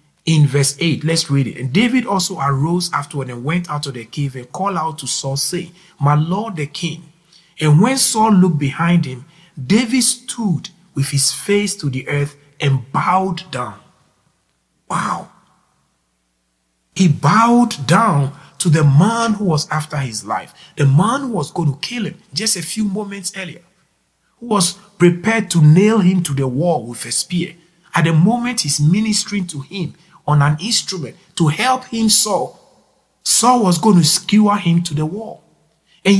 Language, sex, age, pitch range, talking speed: English, male, 50-69, 140-195 Hz, 175 wpm